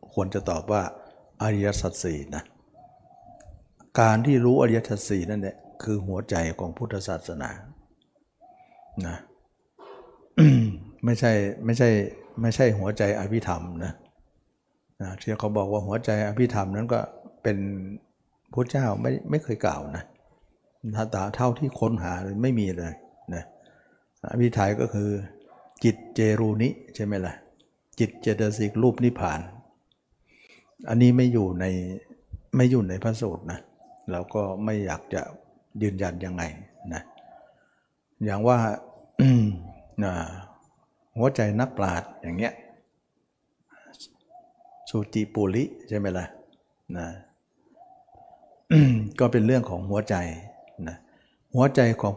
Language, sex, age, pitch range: Thai, male, 60-79, 95-125 Hz